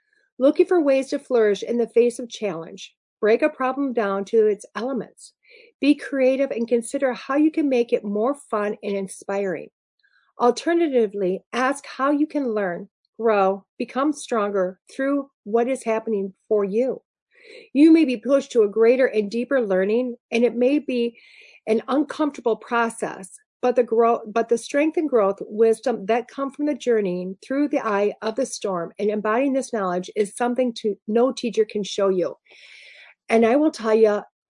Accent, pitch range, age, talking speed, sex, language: American, 215-275 Hz, 40-59, 170 wpm, female, English